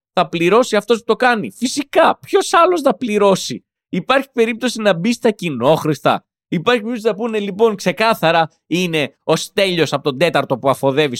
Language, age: Greek, 20-39